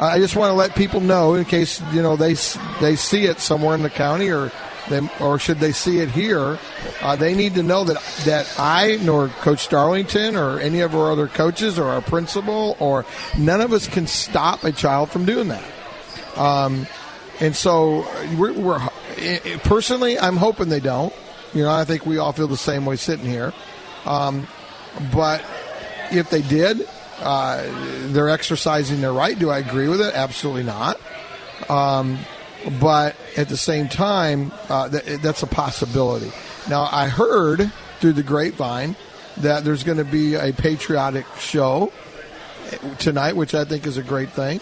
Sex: male